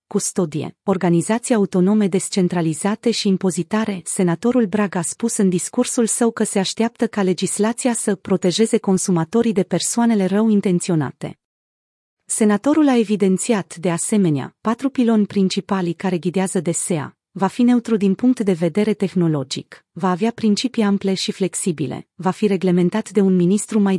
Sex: female